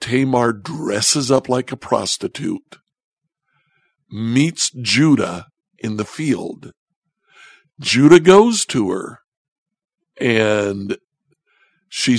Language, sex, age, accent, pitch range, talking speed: English, male, 60-79, American, 105-135 Hz, 85 wpm